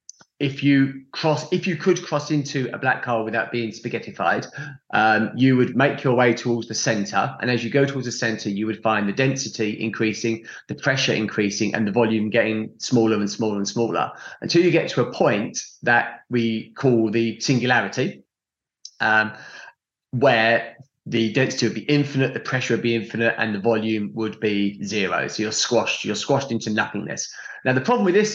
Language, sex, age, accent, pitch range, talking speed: English, male, 30-49, British, 110-140 Hz, 190 wpm